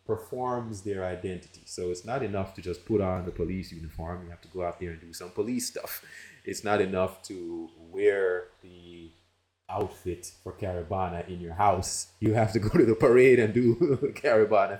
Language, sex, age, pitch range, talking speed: English, male, 30-49, 90-105 Hz, 190 wpm